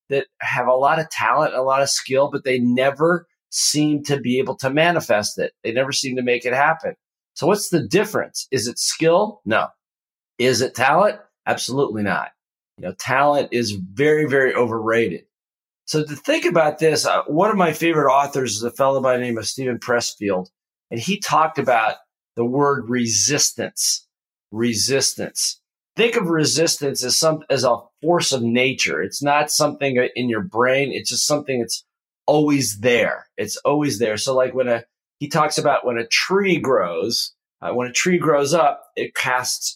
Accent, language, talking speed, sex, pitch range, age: American, English, 180 wpm, male, 125-160 Hz, 40-59